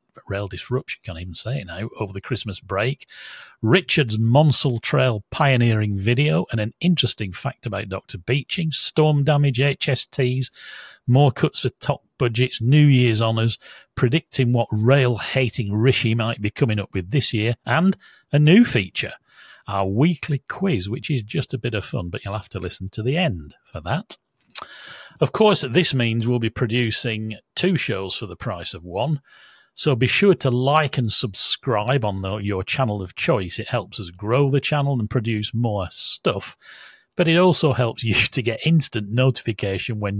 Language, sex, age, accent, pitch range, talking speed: English, male, 40-59, British, 110-140 Hz, 175 wpm